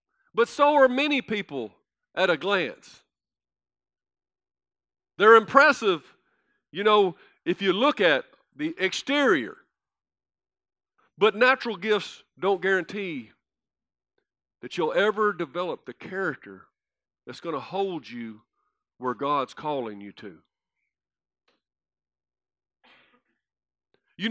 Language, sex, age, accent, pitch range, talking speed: English, male, 50-69, American, 215-280 Hz, 100 wpm